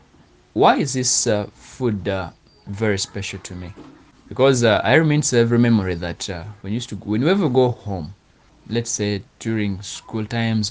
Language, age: English, 20-39